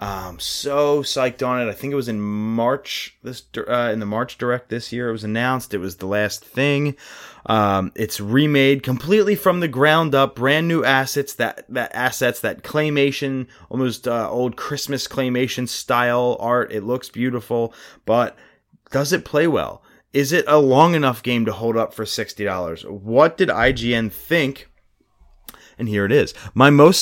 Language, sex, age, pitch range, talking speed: English, male, 20-39, 110-140 Hz, 180 wpm